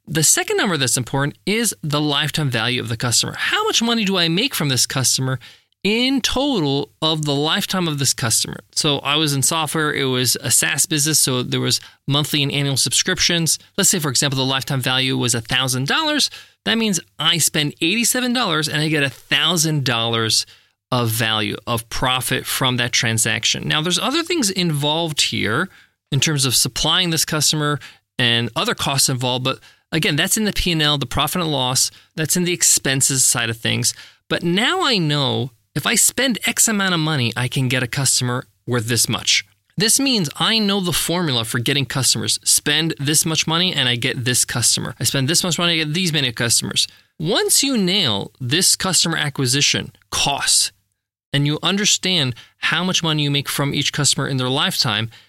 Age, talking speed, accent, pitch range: 20-39, 185 wpm, American, 125-175 Hz